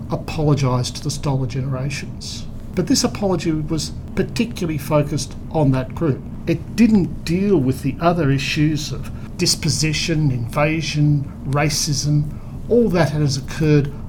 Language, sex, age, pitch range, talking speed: English, male, 50-69, 135-165 Hz, 125 wpm